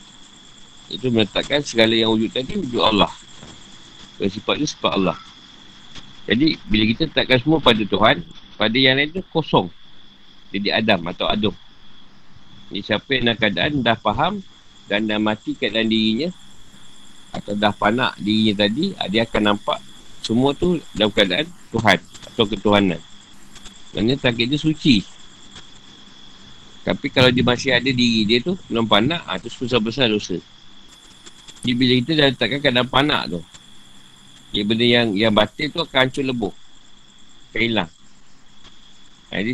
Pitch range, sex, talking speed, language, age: 105-130 Hz, male, 135 wpm, Malay, 50-69